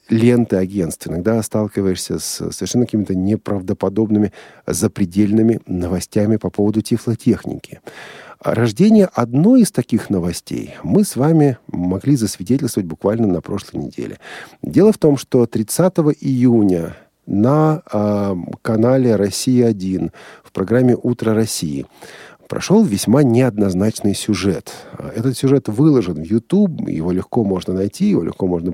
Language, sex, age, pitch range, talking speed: Russian, male, 40-59, 100-140 Hz, 115 wpm